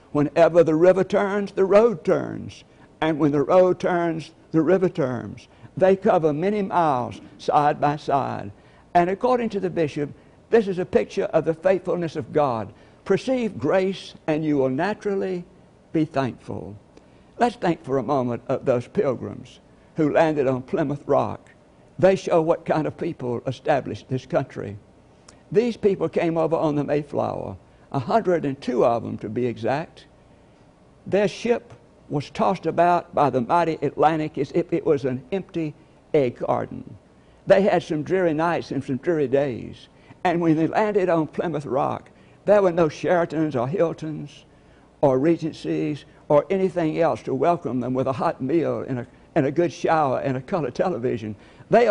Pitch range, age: 135-180 Hz, 60-79